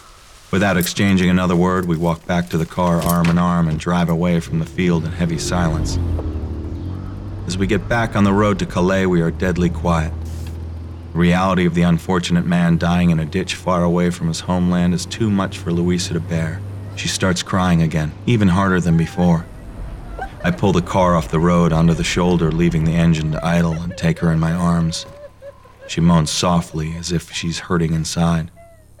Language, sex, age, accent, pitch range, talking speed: English, male, 40-59, American, 85-95 Hz, 190 wpm